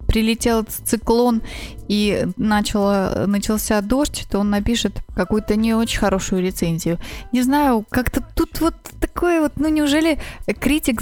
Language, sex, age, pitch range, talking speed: Russian, female, 20-39, 200-255 Hz, 125 wpm